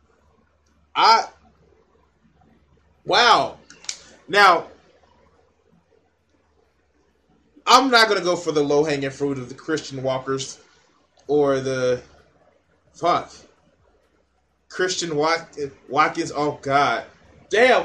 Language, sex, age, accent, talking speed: English, male, 20-39, American, 85 wpm